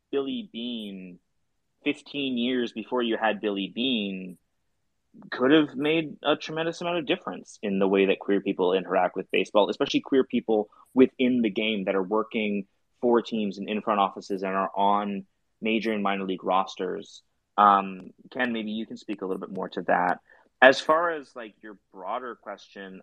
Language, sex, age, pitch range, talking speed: English, male, 20-39, 100-125 Hz, 175 wpm